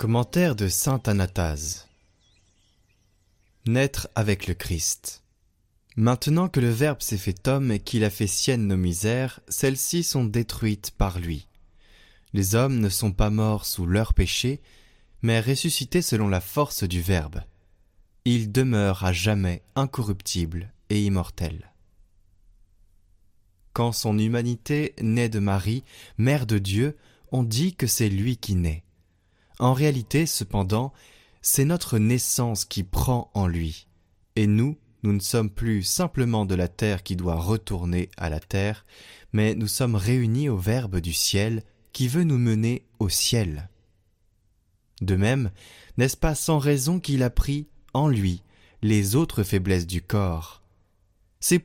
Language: French